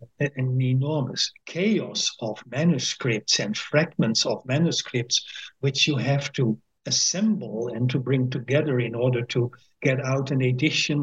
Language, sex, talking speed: English, male, 135 wpm